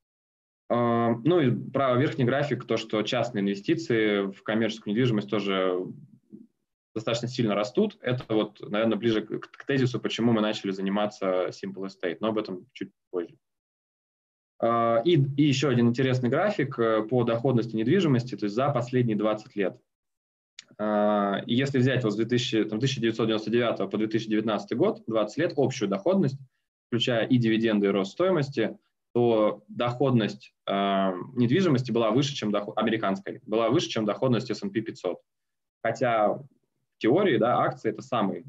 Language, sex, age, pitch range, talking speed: Russian, male, 20-39, 105-125 Hz, 145 wpm